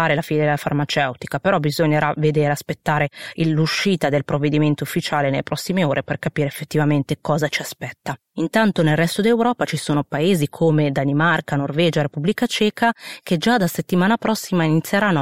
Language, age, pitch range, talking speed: Italian, 30-49, 150-175 Hz, 150 wpm